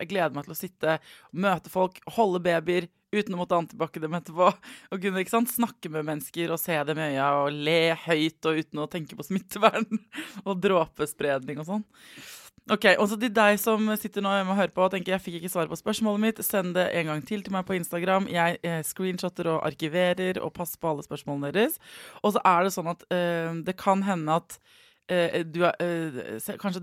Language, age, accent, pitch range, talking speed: English, 20-39, Swedish, 155-195 Hz, 205 wpm